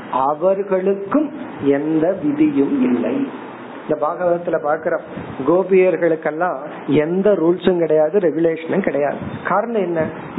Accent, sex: native, male